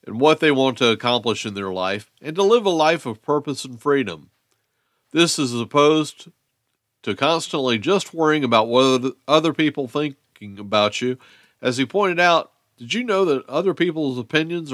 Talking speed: 175 wpm